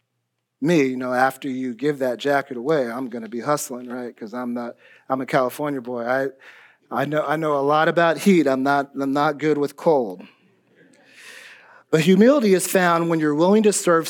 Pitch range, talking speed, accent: 140-180 Hz, 195 wpm, American